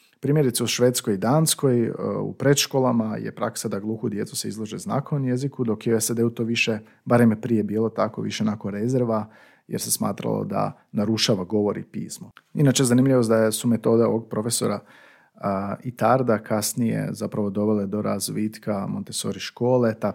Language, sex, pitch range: Croatian, male, 110-135 Hz